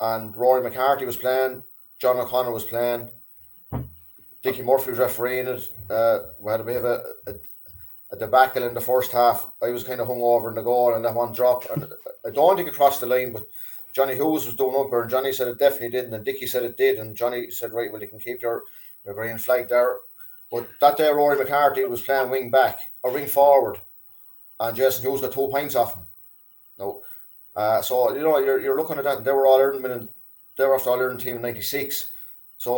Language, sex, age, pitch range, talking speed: English, male, 30-49, 120-140 Hz, 225 wpm